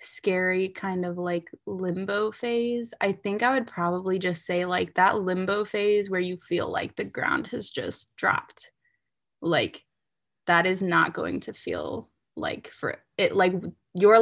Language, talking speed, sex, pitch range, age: English, 160 wpm, female, 175-210 Hz, 20-39